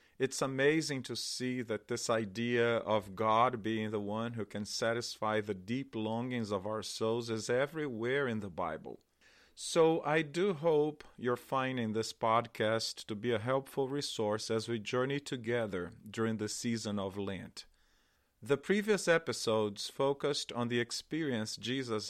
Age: 40-59